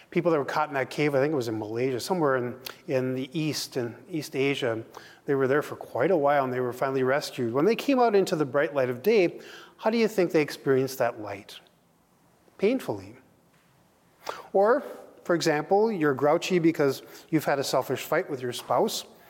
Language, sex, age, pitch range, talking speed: English, male, 40-59, 130-170 Hz, 205 wpm